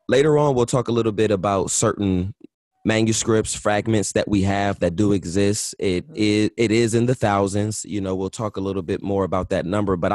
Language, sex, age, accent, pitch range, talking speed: English, male, 20-39, American, 95-115 Hz, 205 wpm